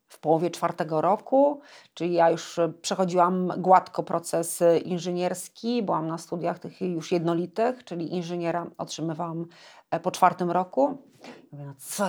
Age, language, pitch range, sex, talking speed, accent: 30-49, Polish, 165-200 Hz, female, 120 wpm, native